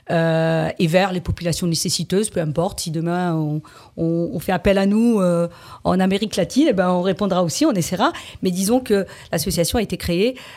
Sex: female